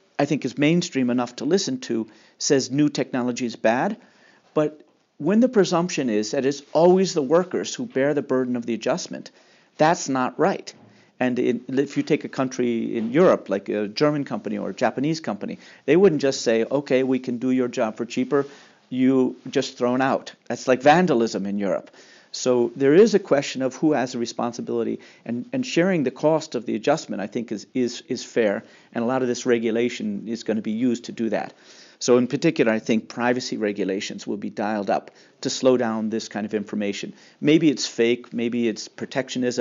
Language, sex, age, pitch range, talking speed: English, male, 50-69, 115-140 Hz, 200 wpm